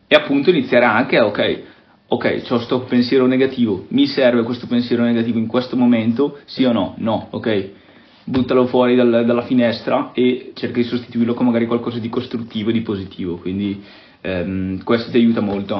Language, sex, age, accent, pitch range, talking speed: Italian, male, 20-39, native, 110-130 Hz, 175 wpm